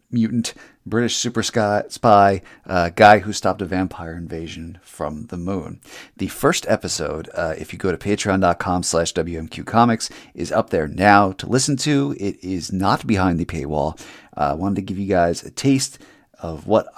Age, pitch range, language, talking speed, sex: 40-59, 85-110 Hz, English, 175 wpm, male